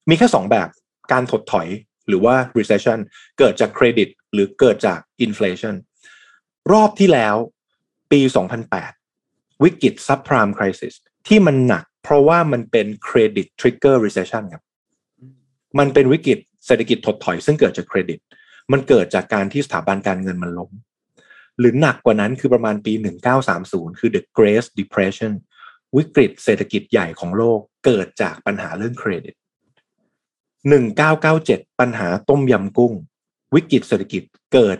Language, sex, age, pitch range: Thai, male, 20-39, 105-140 Hz